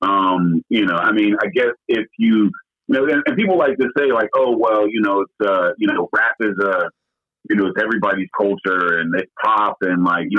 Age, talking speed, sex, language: 40-59, 230 wpm, male, English